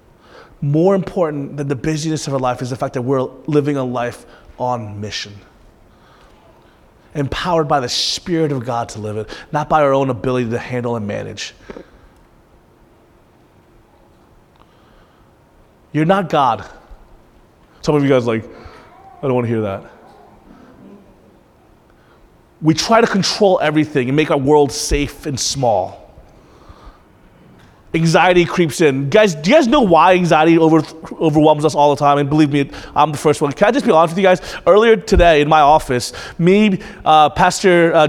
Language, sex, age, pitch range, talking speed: English, male, 30-49, 130-180 Hz, 160 wpm